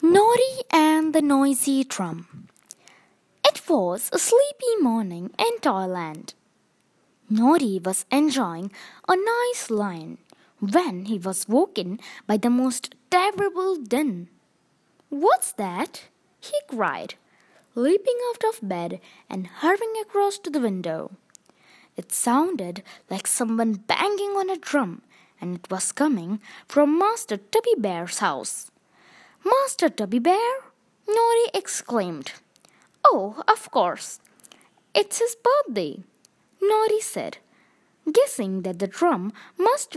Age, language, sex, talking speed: 20-39, Hindi, female, 115 wpm